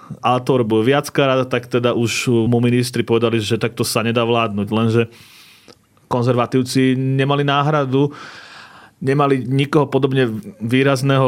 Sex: male